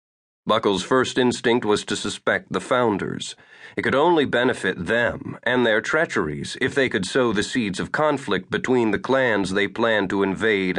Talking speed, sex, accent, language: 170 wpm, male, American, English